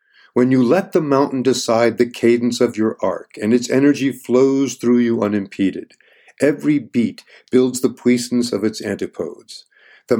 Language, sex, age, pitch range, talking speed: English, male, 50-69, 115-135 Hz, 160 wpm